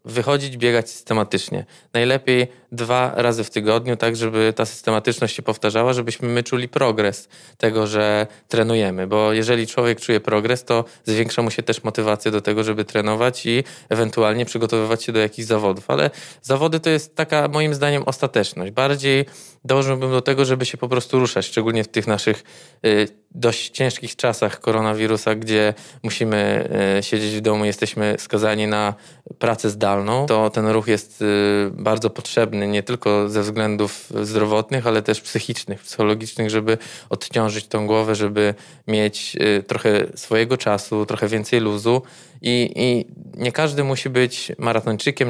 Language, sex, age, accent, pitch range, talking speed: Polish, male, 20-39, native, 110-125 Hz, 150 wpm